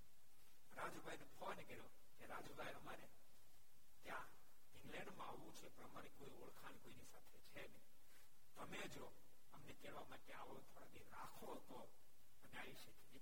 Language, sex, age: Gujarati, male, 60-79